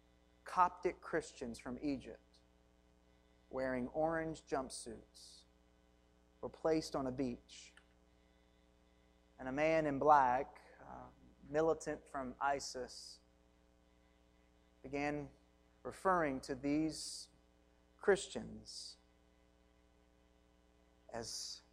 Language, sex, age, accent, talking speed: English, male, 30-49, American, 70 wpm